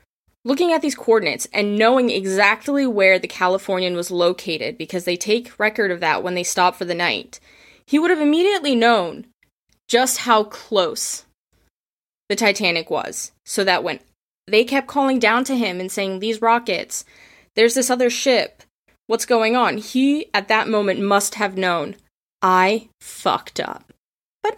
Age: 20-39